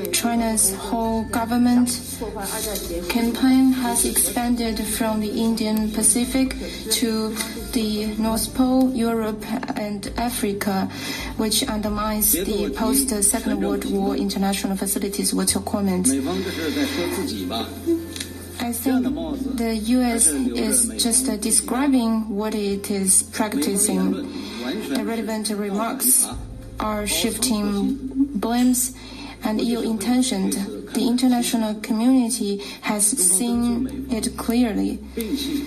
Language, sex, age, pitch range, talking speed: English, female, 30-49, 215-250 Hz, 90 wpm